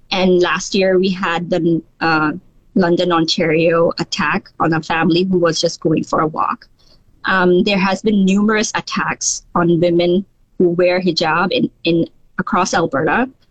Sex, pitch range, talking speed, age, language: female, 170-195 Hz, 155 wpm, 20-39, English